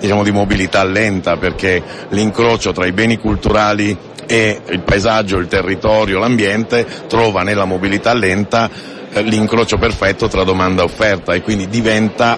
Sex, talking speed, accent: male, 140 wpm, native